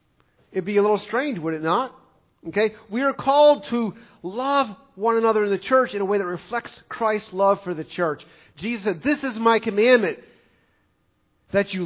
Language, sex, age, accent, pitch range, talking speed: English, male, 50-69, American, 170-240 Hz, 190 wpm